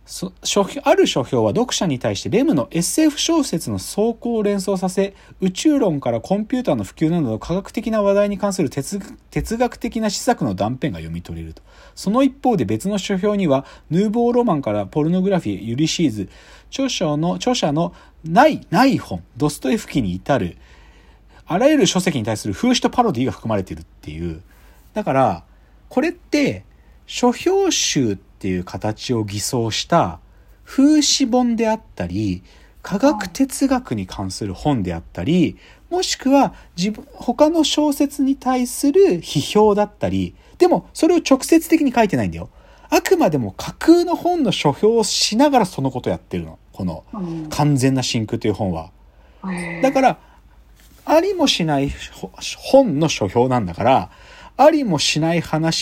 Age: 40-59